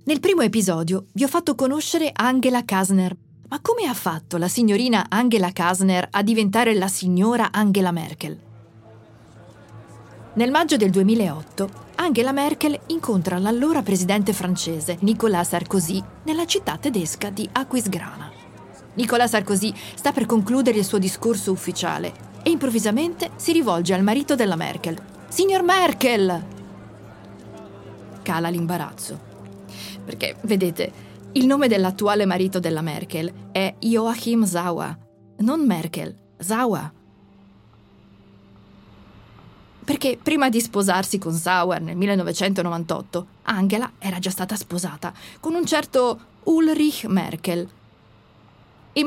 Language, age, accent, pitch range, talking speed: Italian, 40-59, native, 170-240 Hz, 115 wpm